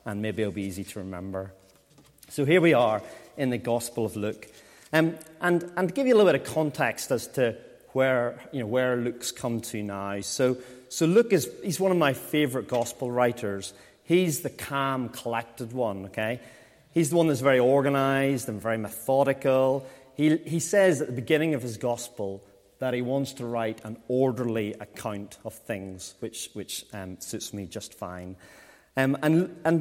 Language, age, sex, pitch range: English, 30-49, male, 110-145 Hz